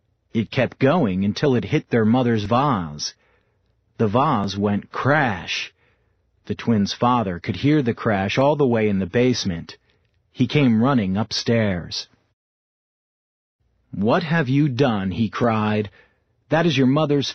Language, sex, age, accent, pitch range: Chinese, male, 40-59, American, 100-135 Hz